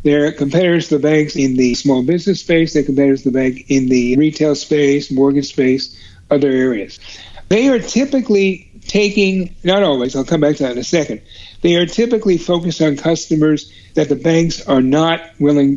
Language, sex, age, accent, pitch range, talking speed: English, male, 60-79, American, 135-170 Hz, 185 wpm